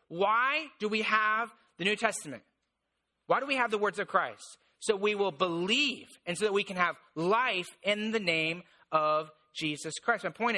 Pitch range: 185-230 Hz